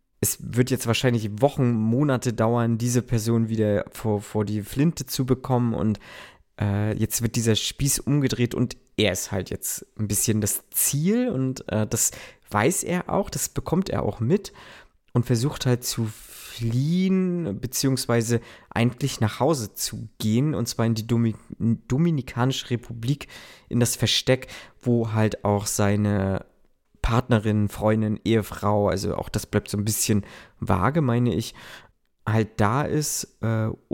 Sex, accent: male, German